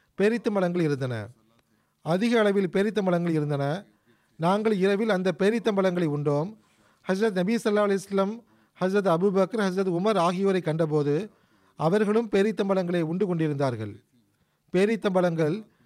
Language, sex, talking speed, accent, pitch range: Tamil, male, 100 wpm, native, 160-205 Hz